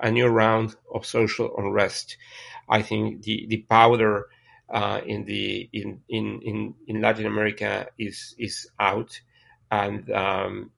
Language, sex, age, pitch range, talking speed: English, male, 40-59, 105-120 Hz, 140 wpm